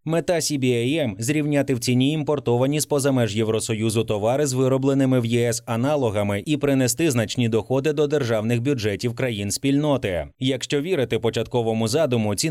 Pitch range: 115-145 Hz